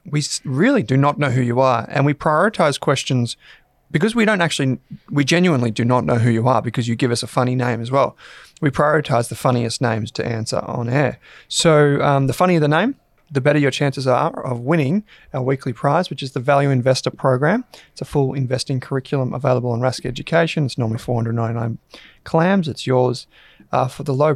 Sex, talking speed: male, 205 wpm